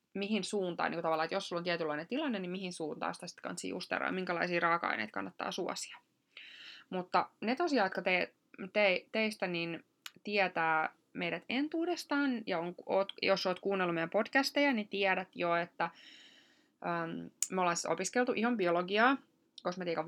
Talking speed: 155 wpm